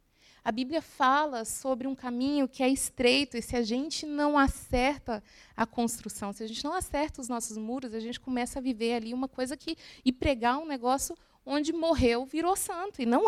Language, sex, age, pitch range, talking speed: English, female, 20-39, 215-275 Hz, 195 wpm